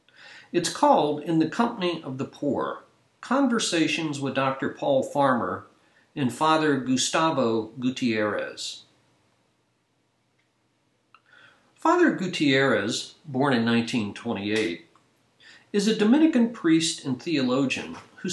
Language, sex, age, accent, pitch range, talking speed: English, male, 60-79, American, 125-185 Hz, 95 wpm